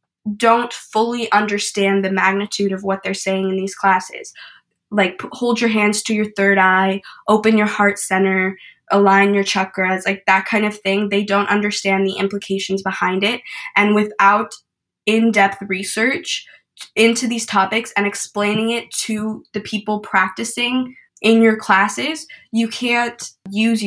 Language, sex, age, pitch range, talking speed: English, female, 10-29, 195-215 Hz, 150 wpm